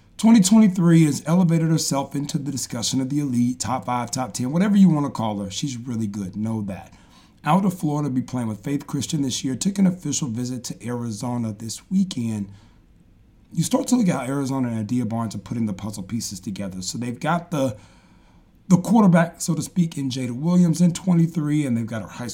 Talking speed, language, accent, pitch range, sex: 205 wpm, English, American, 110-150 Hz, male